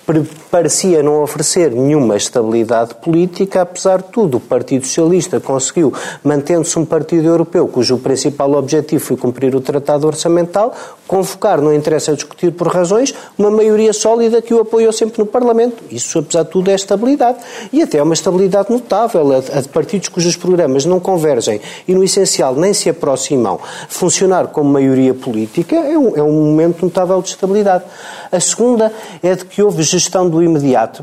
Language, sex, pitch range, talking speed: Portuguese, male, 150-195 Hz, 160 wpm